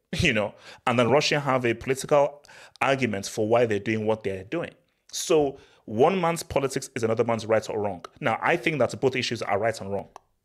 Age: 30-49